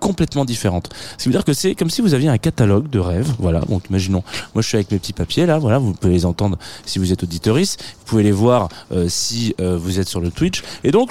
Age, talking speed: 20-39, 270 wpm